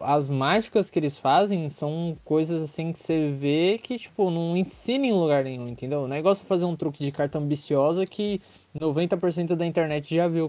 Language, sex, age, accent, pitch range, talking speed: Portuguese, male, 20-39, Brazilian, 130-170 Hz, 200 wpm